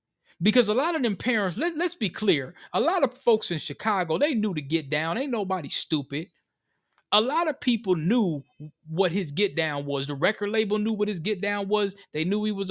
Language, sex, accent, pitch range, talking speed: English, male, American, 165-215 Hz, 225 wpm